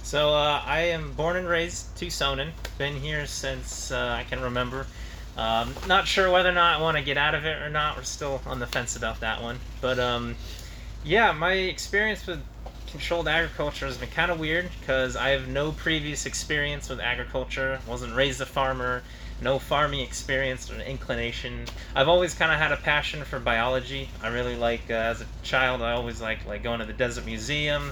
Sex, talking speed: male, 200 wpm